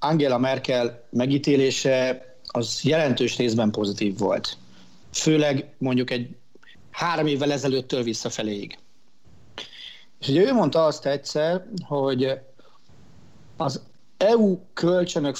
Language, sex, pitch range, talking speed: Hungarian, male, 125-155 Hz, 95 wpm